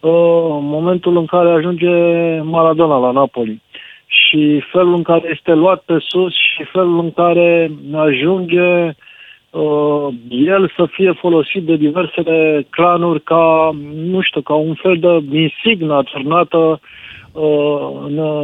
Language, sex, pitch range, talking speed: Romanian, male, 145-175 Hz, 125 wpm